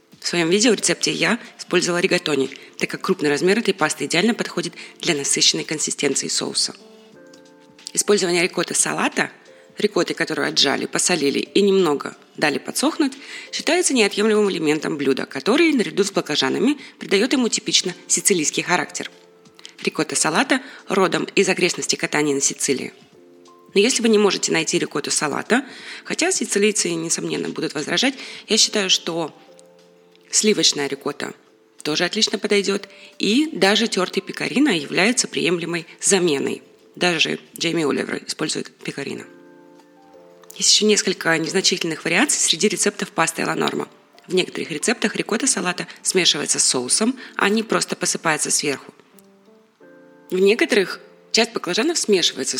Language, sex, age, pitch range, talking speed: Russian, female, 20-39, 150-215 Hz, 125 wpm